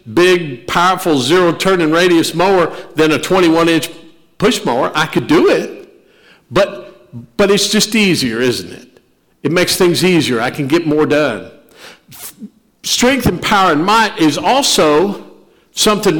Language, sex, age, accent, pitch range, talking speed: English, male, 50-69, American, 125-185 Hz, 145 wpm